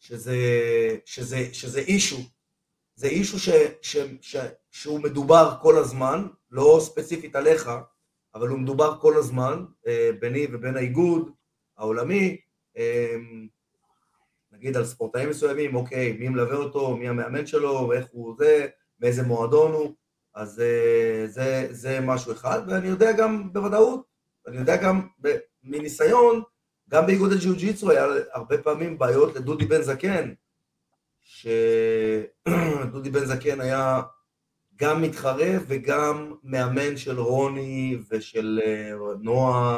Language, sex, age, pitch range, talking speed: Hebrew, male, 30-49, 125-170 Hz, 120 wpm